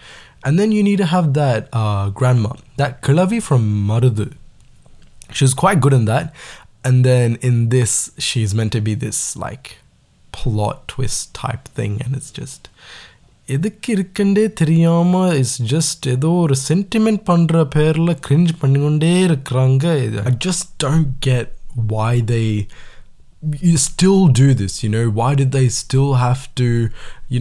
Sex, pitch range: male, 110-140 Hz